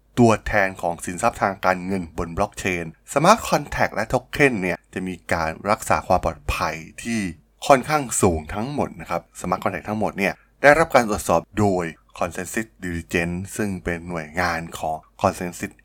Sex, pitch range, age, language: male, 85-105 Hz, 20-39, Thai